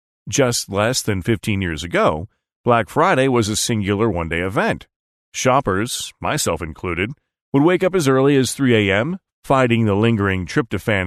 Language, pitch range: English, 95-125 Hz